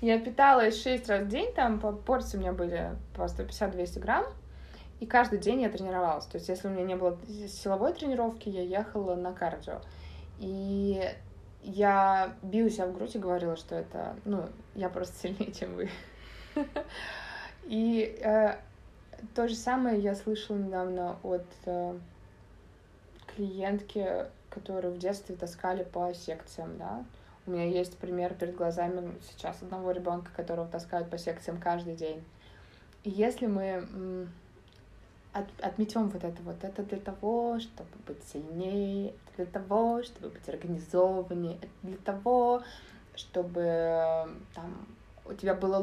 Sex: female